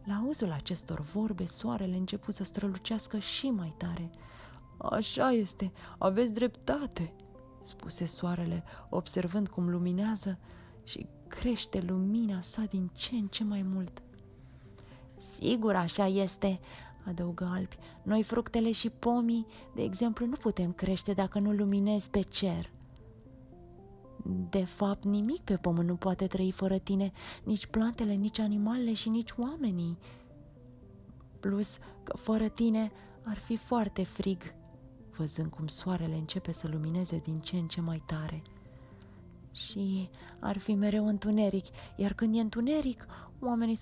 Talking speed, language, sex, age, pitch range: 130 wpm, Romanian, female, 30-49, 170-220 Hz